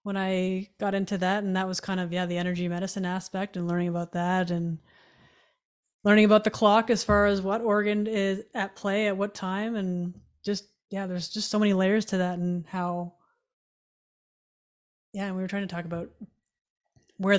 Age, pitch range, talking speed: 30-49, 175-200 Hz, 190 wpm